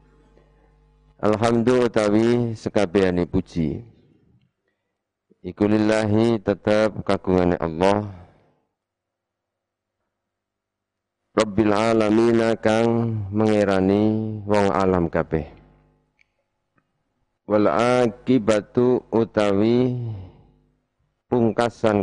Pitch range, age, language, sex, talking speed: 95-110 Hz, 50-69, Indonesian, male, 50 wpm